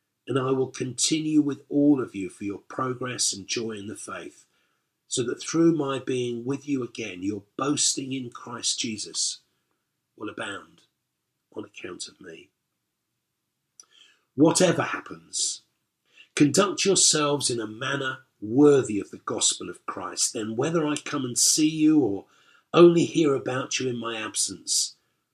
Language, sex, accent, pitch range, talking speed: English, male, British, 115-150 Hz, 150 wpm